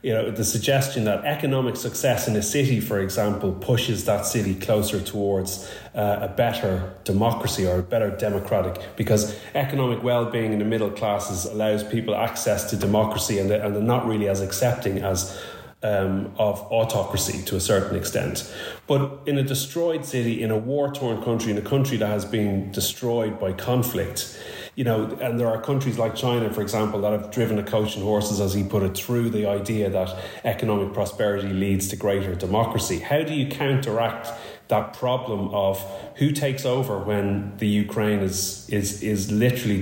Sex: male